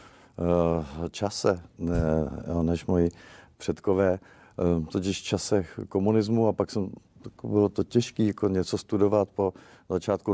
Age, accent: 50-69, native